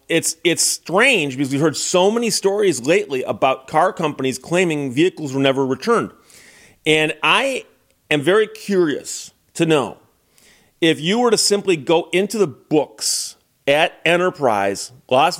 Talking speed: 145 wpm